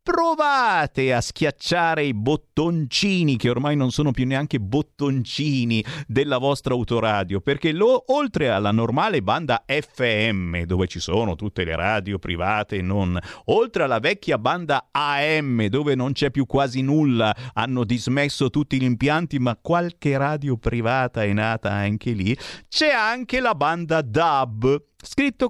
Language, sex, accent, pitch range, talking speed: Italian, male, native, 110-160 Hz, 145 wpm